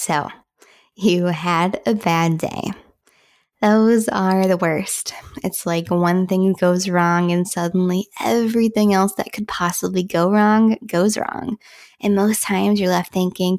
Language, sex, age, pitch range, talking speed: English, female, 10-29, 170-205 Hz, 145 wpm